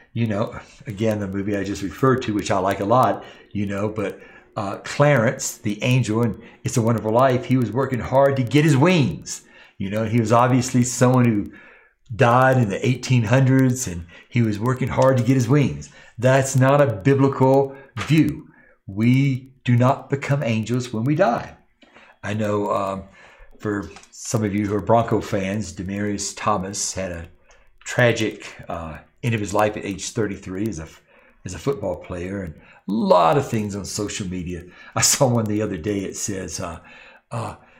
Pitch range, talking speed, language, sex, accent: 100-125 Hz, 185 wpm, English, male, American